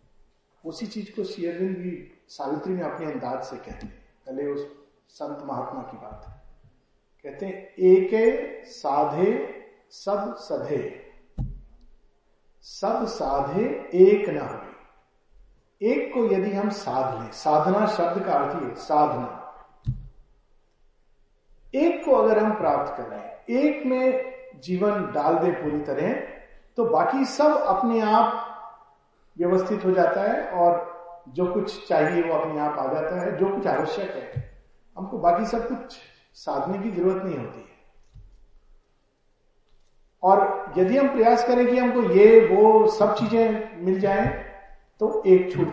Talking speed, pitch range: 135 wpm, 170-235 Hz